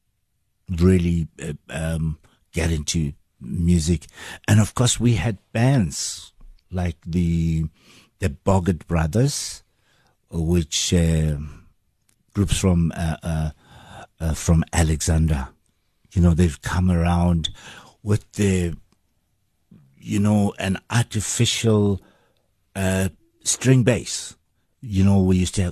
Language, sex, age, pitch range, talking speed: English, male, 60-79, 85-105 Hz, 100 wpm